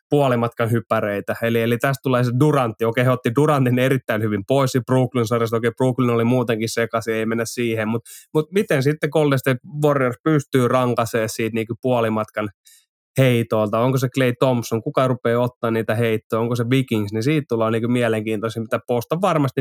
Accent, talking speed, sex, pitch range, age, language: native, 175 wpm, male, 115-135 Hz, 20-39, Finnish